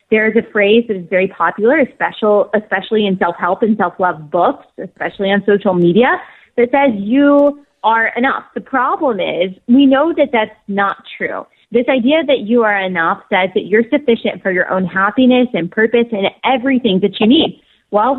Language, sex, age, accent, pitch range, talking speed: English, female, 20-39, American, 200-255 Hz, 180 wpm